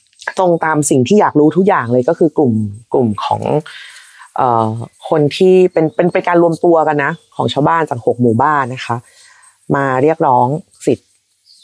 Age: 30-49